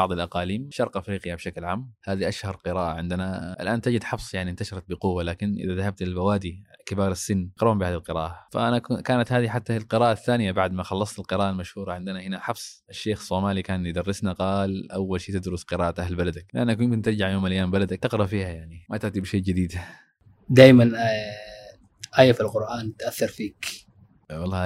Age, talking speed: 20-39, 170 wpm